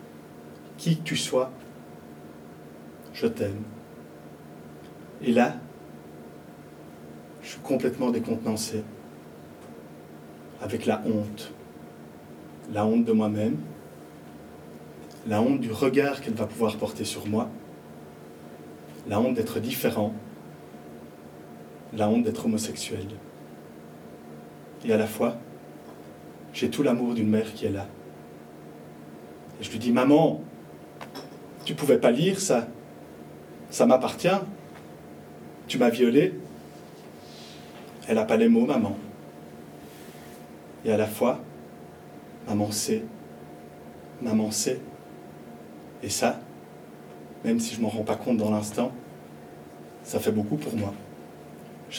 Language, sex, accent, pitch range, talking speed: French, male, French, 75-100 Hz, 110 wpm